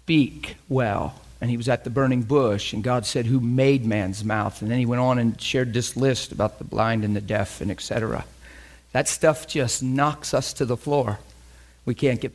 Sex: male